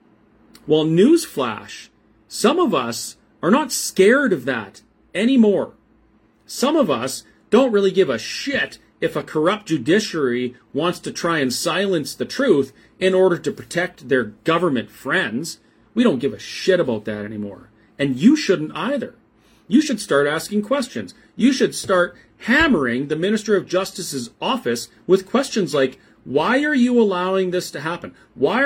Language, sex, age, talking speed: English, male, 40-59, 155 wpm